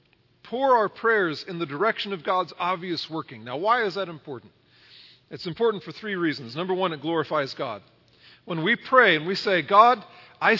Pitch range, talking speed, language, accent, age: 130-190 Hz, 185 wpm, English, American, 40-59